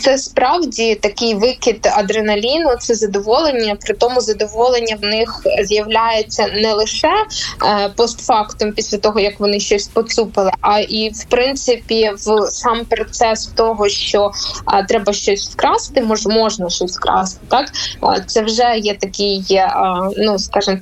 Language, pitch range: Ukrainian, 205-240 Hz